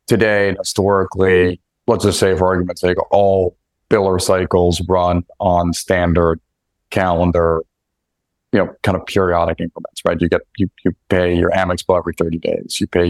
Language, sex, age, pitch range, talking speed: English, male, 40-59, 85-100 Hz, 160 wpm